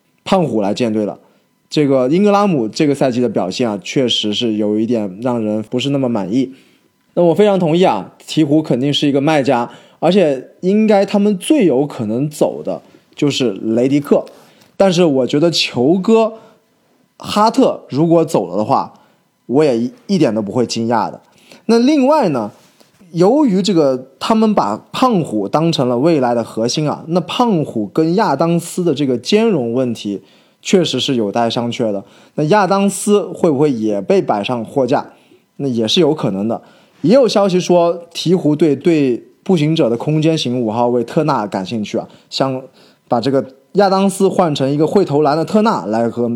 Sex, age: male, 20-39